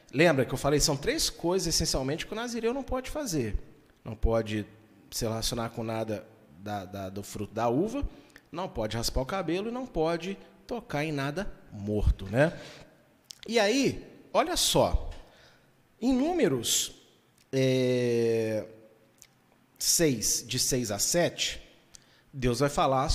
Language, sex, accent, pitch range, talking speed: Portuguese, male, Brazilian, 115-175 Hz, 140 wpm